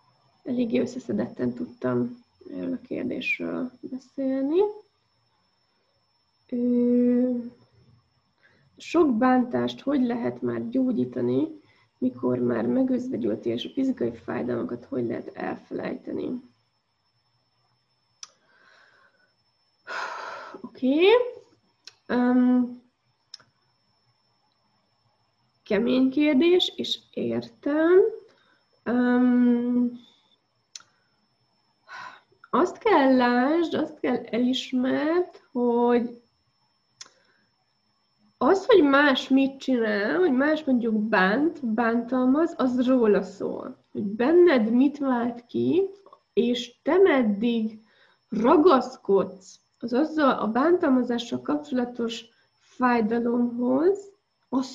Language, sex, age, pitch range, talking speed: Hungarian, female, 20-39, 215-300 Hz, 70 wpm